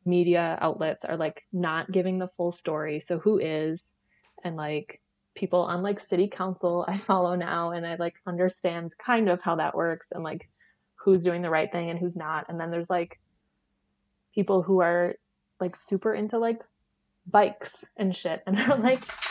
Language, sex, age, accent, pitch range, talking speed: English, female, 20-39, American, 170-200 Hz, 180 wpm